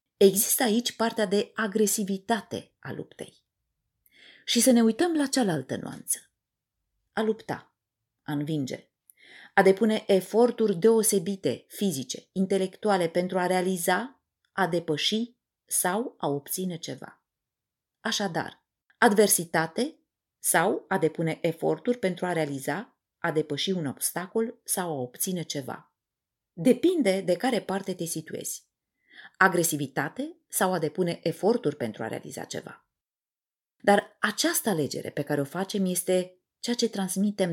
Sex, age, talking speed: female, 30-49, 120 wpm